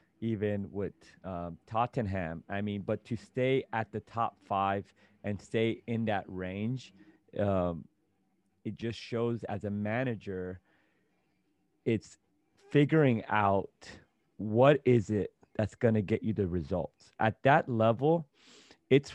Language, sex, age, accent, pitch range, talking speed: English, male, 30-49, American, 100-125 Hz, 130 wpm